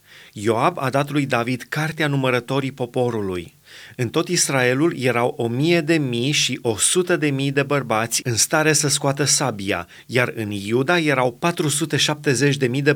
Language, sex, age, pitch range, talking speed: Romanian, male, 30-49, 120-150 Hz, 160 wpm